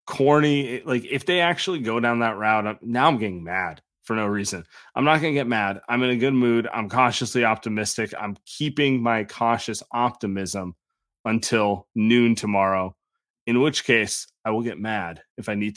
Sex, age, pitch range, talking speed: male, 30-49, 110-135 Hz, 180 wpm